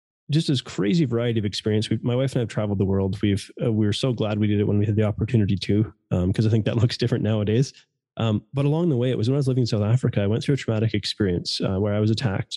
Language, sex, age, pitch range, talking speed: English, male, 20-39, 105-130 Hz, 300 wpm